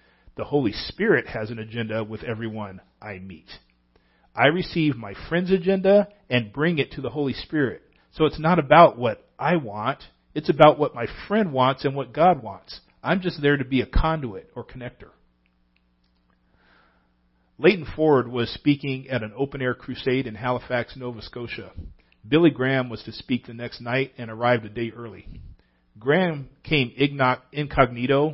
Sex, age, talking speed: male, 40-59, 160 wpm